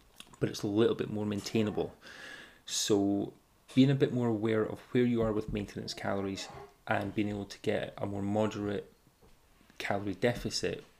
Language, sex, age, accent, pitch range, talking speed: English, male, 20-39, British, 100-120 Hz, 165 wpm